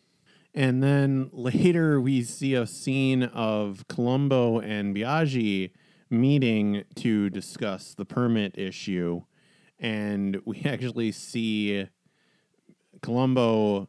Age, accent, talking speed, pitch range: 30-49, American, 95 wpm, 95-125 Hz